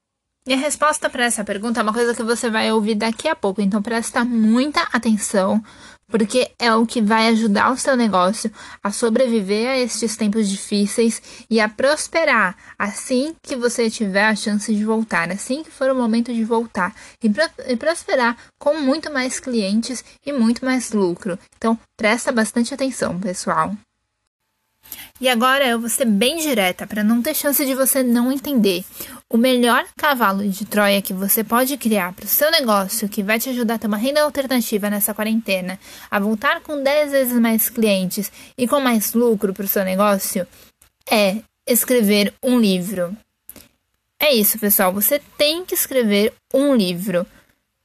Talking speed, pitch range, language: 170 wpm, 210-260 Hz, Portuguese